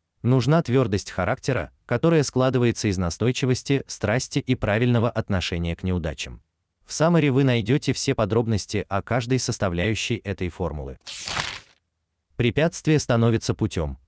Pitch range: 90-130 Hz